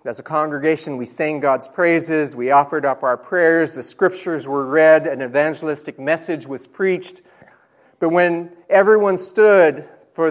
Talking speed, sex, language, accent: 150 wpm, male, English, American